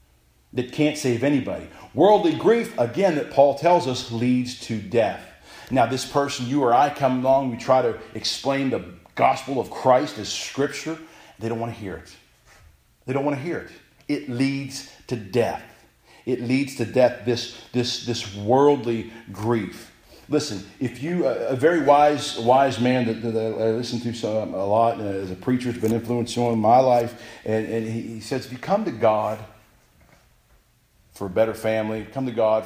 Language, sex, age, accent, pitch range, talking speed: English, male, 40-59, American, 110-135 Hz, 175 wpm